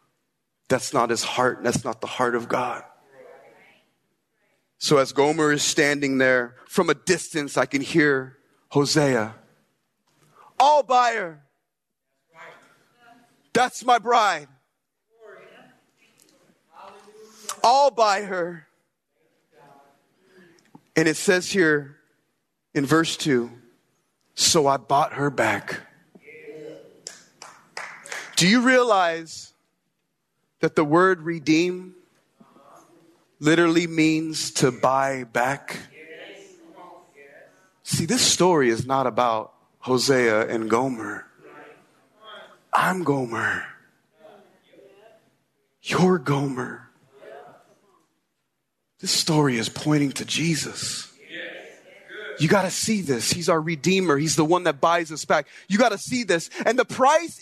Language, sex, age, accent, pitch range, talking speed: English, male, 30-49, American, 140-200 Hz, 100 wpm